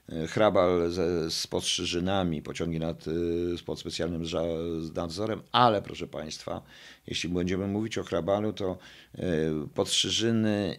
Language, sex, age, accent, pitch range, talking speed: Polish, male, 50-69, native, 85-105 Hz, 115 wpm